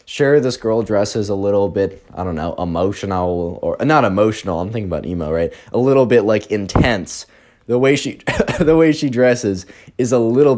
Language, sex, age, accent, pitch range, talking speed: English, male, 20-39, American, 90-125 Hz, 195 wpm